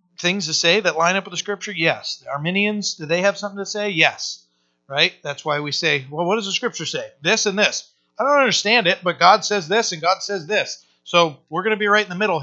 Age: 40-59